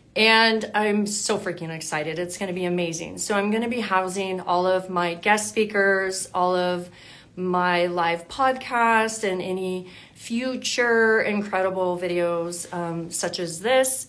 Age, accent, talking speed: 30-49, American, 150 wpm